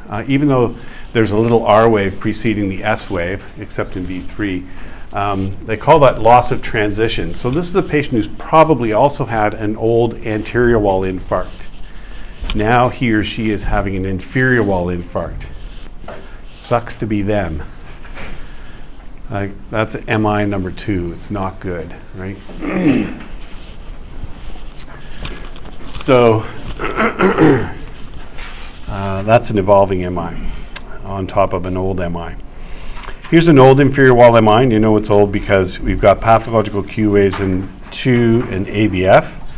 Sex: male